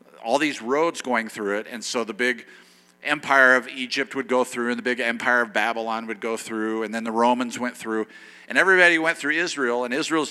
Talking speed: 220 wpm